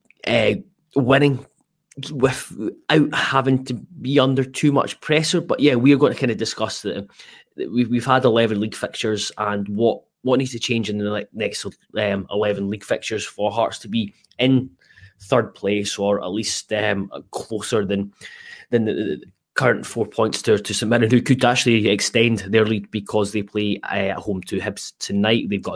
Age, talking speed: 20-39, 185 wpm